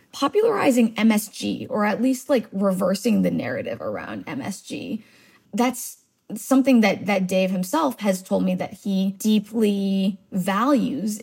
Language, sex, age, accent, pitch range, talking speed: English, female, 20-39, American, 195-245 Hz, 130 wpm